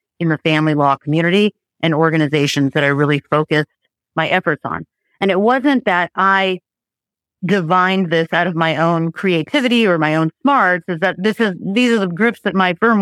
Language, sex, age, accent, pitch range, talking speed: English, female, 40-59, American, 160-195 Hz, 190 wpm